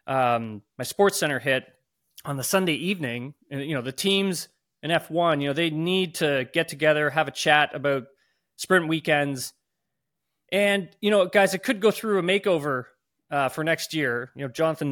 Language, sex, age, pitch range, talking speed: English, male, 20-39, 130-165 Hz, 180 wpm